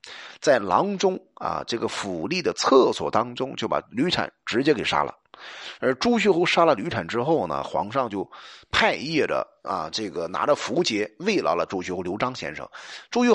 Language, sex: Chinese, male